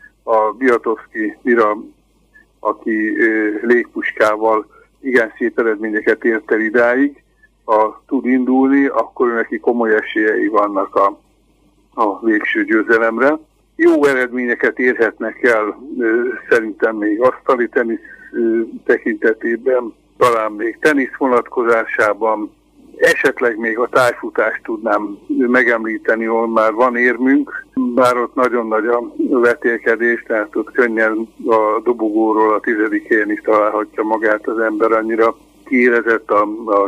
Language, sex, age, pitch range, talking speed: Hungarian, male, 60-79, 110-145 Hz, 115 wpm